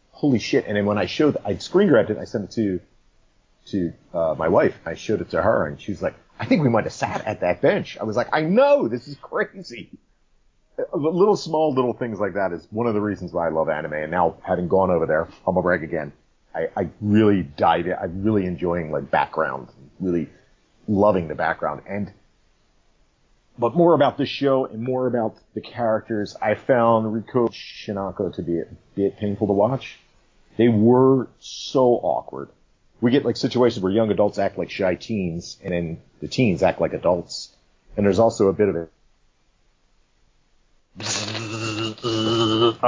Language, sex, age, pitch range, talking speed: English, male, 30-49, 95-120 Hz, 195 wpm